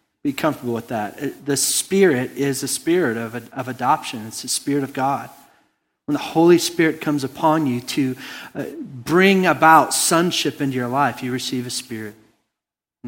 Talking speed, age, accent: 165 wpm, 40-59, American